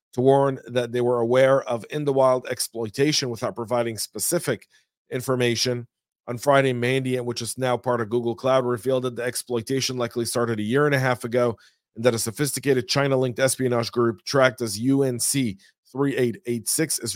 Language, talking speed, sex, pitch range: English, 160 wpm, male, 115-135 Hz